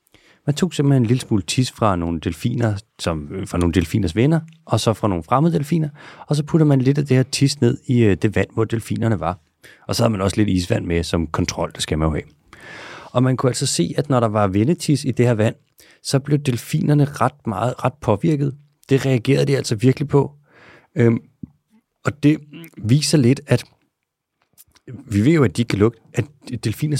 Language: Danish